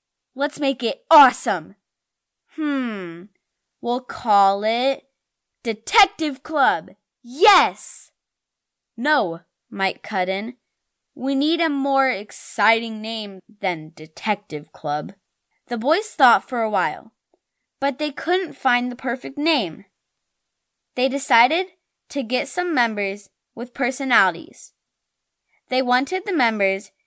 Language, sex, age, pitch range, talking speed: English, female, 10-29, 220-290 Hz, 110 wpm